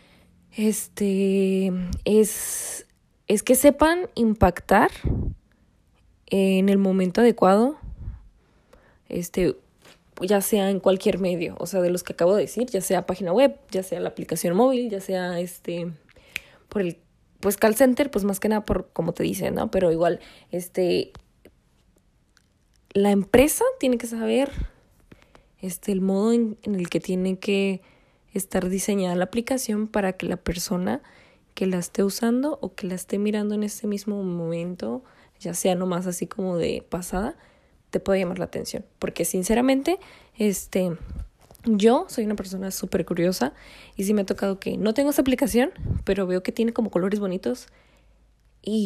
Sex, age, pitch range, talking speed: female, 10-29, 185-225 Hz, 155 wpm